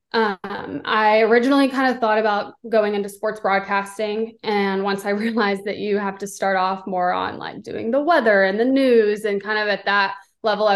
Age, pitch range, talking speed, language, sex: 20-39, 195-225 Hz, 205 wpm, English, female